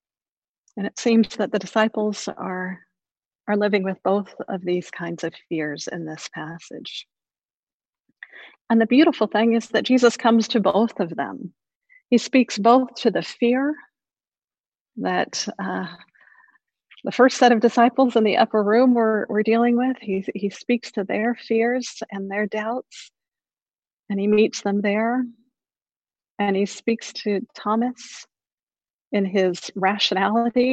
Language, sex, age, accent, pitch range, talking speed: English, female, 40-59, American, 200-240 Hz, 145 wpm